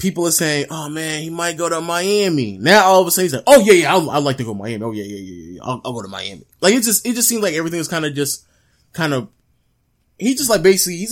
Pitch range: 115-165 Hz